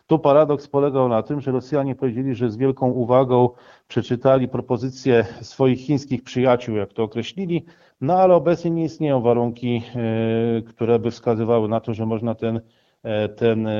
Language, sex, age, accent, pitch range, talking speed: Polish, male, 40-59, native, 115-145 Hz, 150 wpm